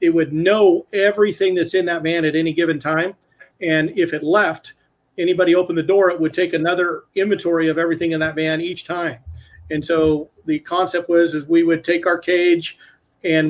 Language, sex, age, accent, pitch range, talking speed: English, male, 40-59, American, 160-185 Hz, 195 wpm